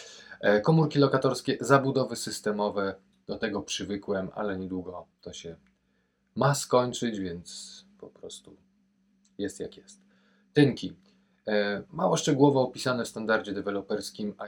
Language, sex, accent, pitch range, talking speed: Polish, male, native, 95-130 Hz, 110 wpm